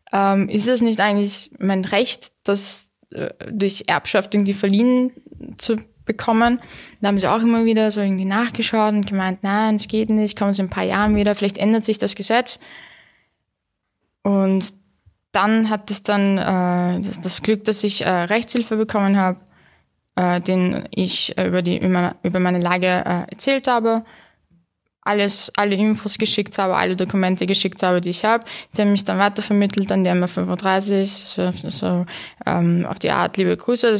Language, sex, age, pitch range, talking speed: German, female, 10-29, 185-215 Hz, 175 wpm